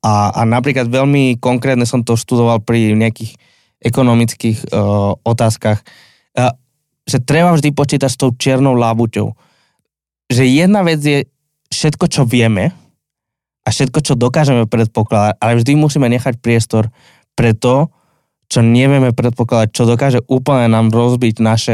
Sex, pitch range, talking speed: male, 115-135 Hz, 140 wpm